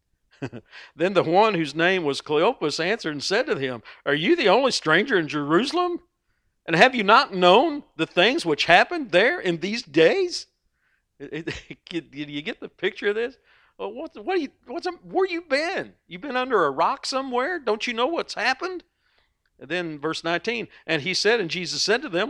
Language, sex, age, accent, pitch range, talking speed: English, male, 50-69, American, 155-245 Hz, 195 wpm